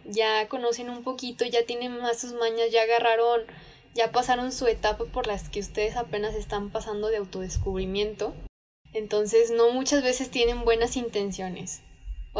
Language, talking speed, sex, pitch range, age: Spanish, 155 wpm, female, 205-250 Hz, 10-29